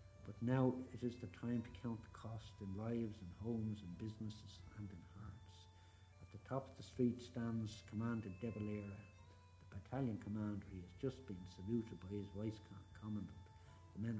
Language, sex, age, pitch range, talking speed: English, male, 60-79, 95-115 Hz, 180 wpm